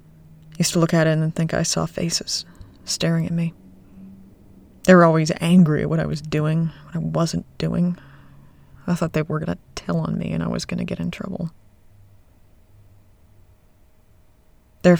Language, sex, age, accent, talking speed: English, female, 20-39, American, 180 wpm